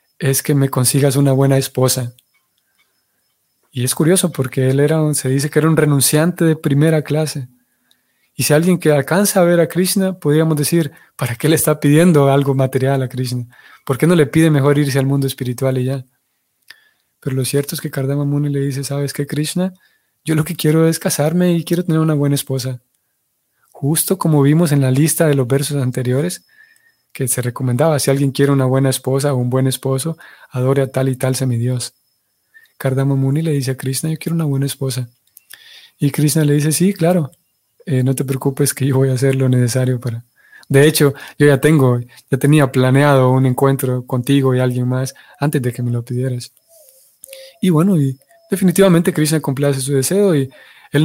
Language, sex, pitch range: Spanish, male, 130-155 Hz